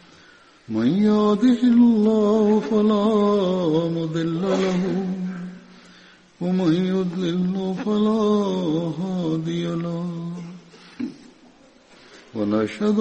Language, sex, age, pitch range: Indonesian, male, 60-79, 170-210 Hz